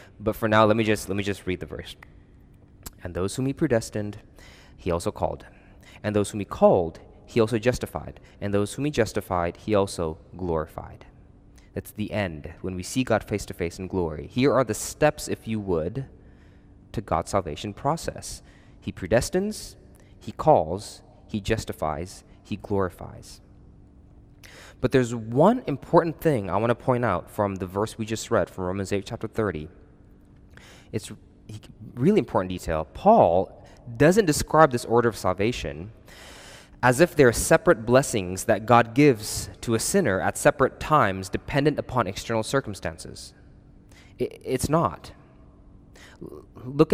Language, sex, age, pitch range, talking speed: English, male, 20-39, 95-120 Hz, 155 wpm